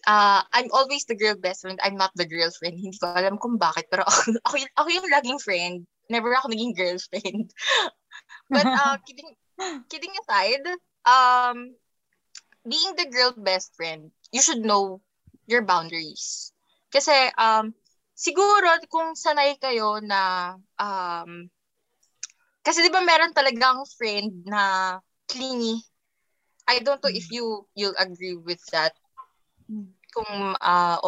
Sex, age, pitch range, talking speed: female, 20-39, 195-275 Hz, 140 wpm